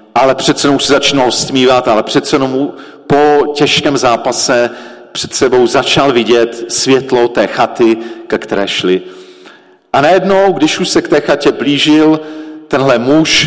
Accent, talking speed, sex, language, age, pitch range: native, 145 wpm, male, Czech, 50-69, 120-155 Hz